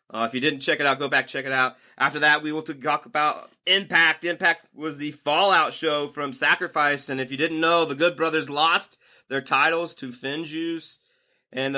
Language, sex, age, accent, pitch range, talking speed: English, male, 20-39, American, 130-165 Hz, 210 wpm